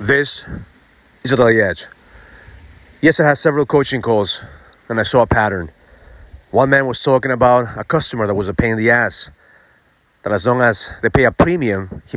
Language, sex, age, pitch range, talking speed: English, male, 30-49, 110-155 Hz, 190 wpm